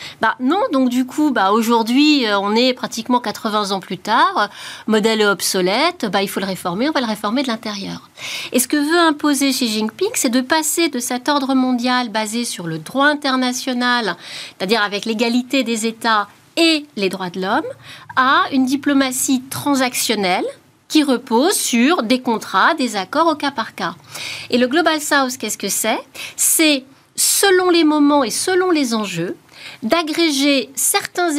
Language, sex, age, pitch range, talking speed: French, female, 40-59, 220-285 Hz, 170 wpm